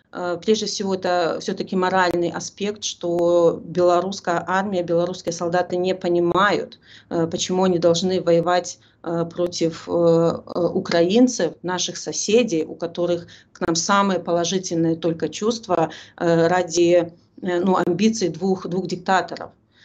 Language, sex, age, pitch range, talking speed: Russian, female, 30-49, 170-185 Hz, 105 wpm